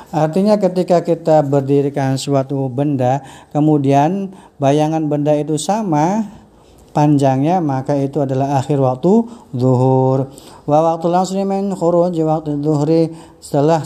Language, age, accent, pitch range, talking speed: Indonesian, 50-69, native, 140-175 Hz, 105 wpm